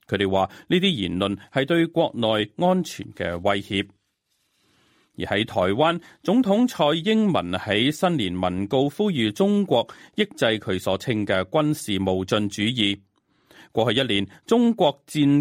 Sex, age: male, 30-49